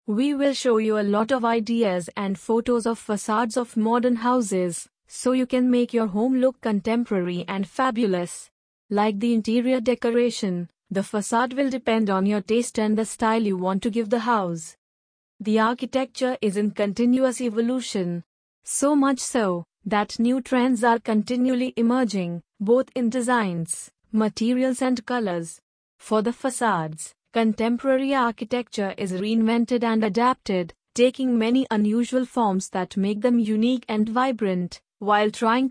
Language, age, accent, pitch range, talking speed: English, 30-49, Indian, 205-250 Hz, 145 wpm